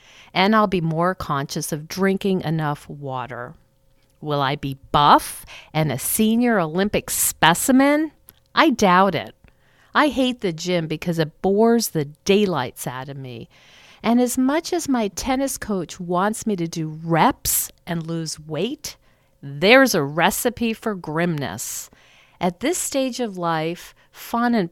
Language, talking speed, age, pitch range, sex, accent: English, 145 wpm, 50-69, 145-225 Hz, female, American